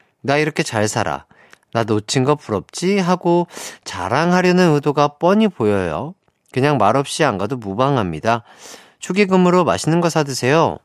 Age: 40-59